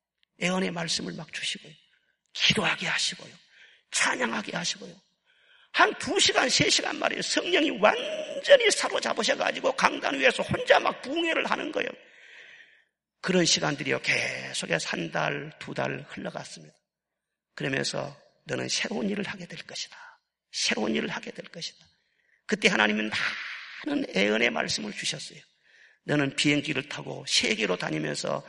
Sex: male